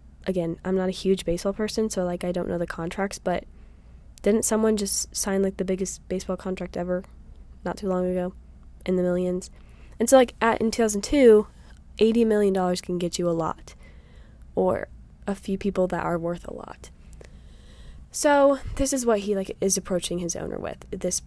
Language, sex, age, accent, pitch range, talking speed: English, female, 10-29, American, 175-210 Hz, 190 wpm